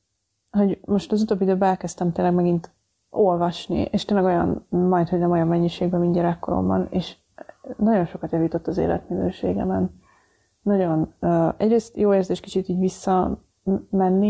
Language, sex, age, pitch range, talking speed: Hungarian, female, 20-39, 175-205 Hz, 135 wpm